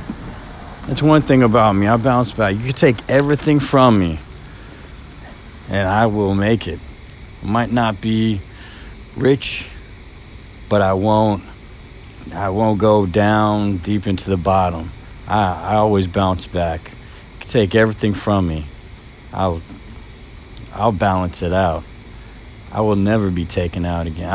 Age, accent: 40-59, American